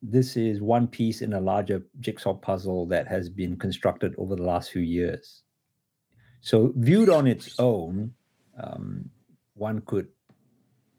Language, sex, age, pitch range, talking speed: English, male, 50-69, 100-125 Hz, 140 wpm